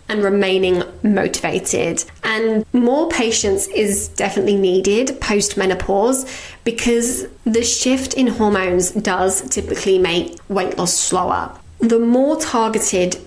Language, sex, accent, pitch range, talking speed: English, female, British, 195-245 Hz, 115 wpm